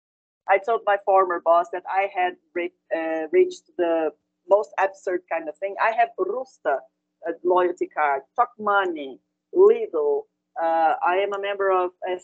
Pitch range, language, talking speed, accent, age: 175-230 Hz, Finnish, 155 wpm, Brazilian, 30-49